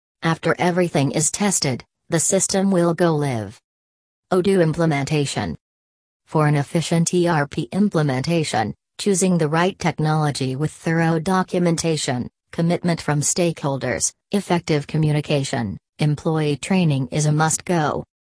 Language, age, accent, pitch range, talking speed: English, 40-59, American, 140-170 Hz, 110 wpm